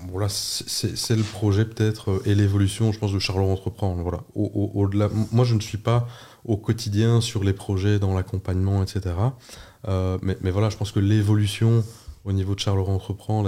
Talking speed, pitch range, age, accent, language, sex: 200 wpm, 95-110 Hz, 20-39, French, French, male